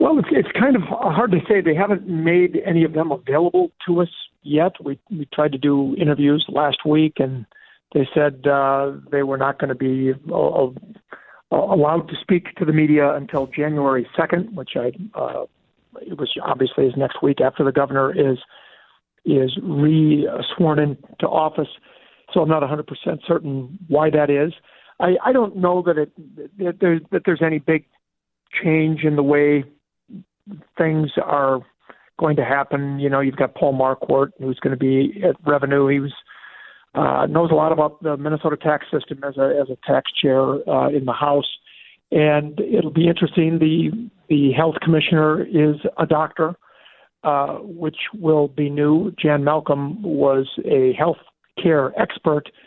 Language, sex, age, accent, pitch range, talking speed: English, male, 50-69, American, 140-165 Hz, 170 wpm